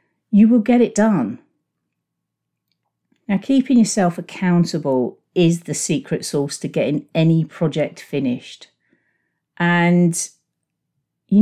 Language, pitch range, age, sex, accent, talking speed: English, 155-195 Hz, 50-69, female, British, 105 wpm